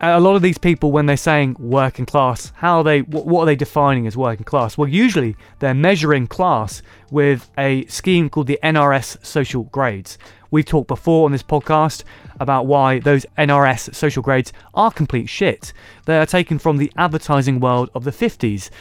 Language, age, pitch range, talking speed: English, 20-39, 125-155 Hz, 190 wpm